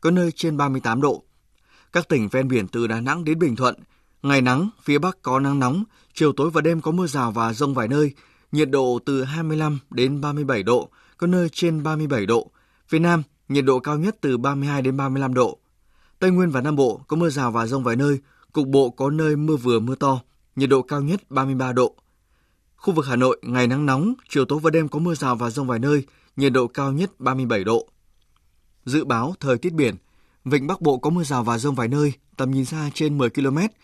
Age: 20-39